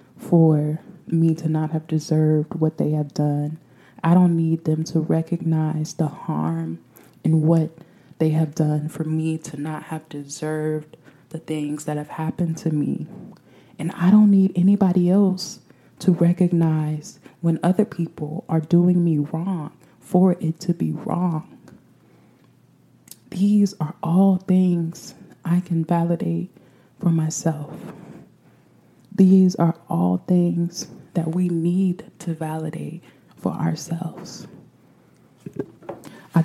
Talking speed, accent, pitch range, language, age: 125 wpm, American, 150-175 Hz, English, 20-39